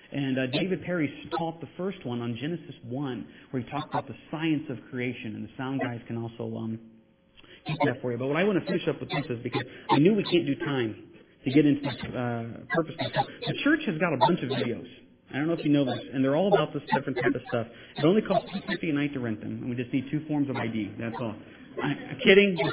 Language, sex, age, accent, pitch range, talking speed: English, male, 40-59, American, 130-195 Hz, 265 wpm